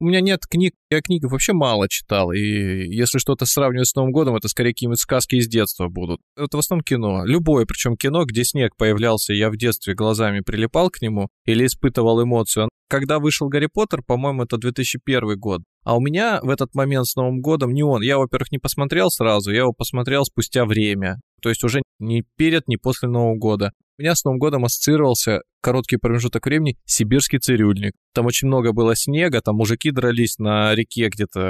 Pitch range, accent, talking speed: 110-140 Hz, native, 195 wpm